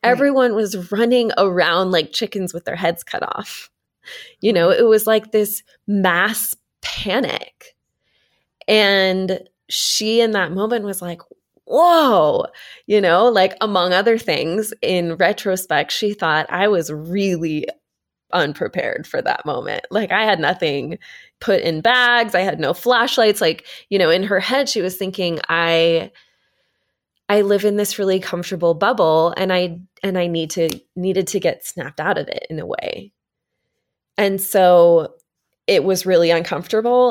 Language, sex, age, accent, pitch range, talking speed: English, female, 20-39, American, 170-210 Hz, 150 wpm